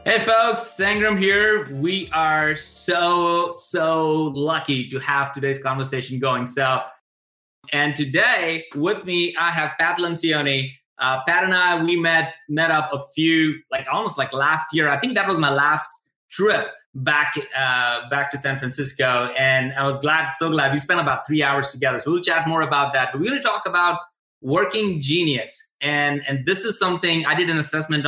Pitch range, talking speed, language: 135-165 Hz, 185 wpm, English